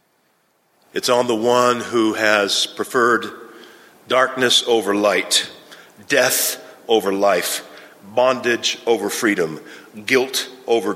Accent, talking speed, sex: American, 100 wpm, male